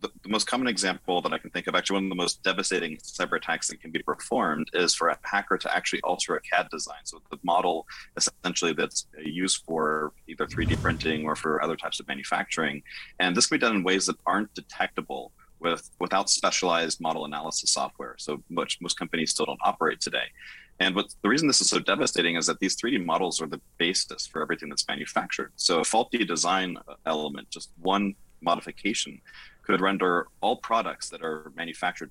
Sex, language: male, English